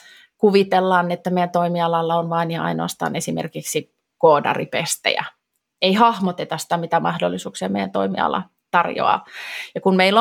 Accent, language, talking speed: native, Finnish, 125 wpm